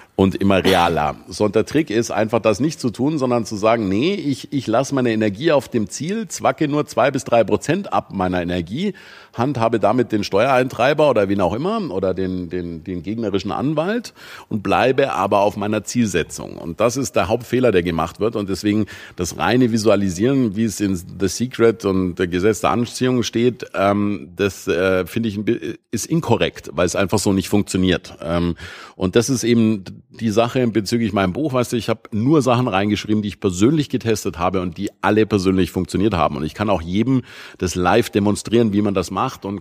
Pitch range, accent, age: 95-120 Hz, German, 50-69